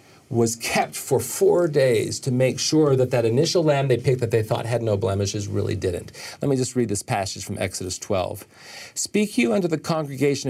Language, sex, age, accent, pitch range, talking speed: English, male, 50-69, American, 105-140 Hz, 205 wpm